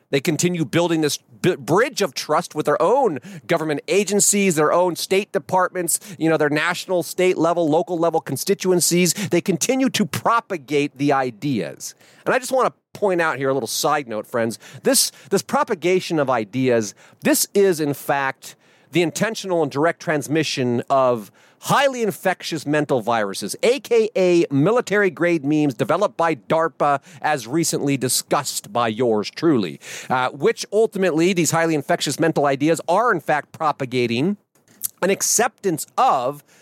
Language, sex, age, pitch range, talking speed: English, male, 40-59, 140-185 Hz, 150 wpm